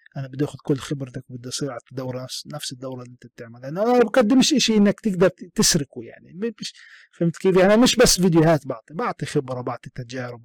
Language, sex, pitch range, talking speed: Arabic, male, 130-175 Hz, 200 wpm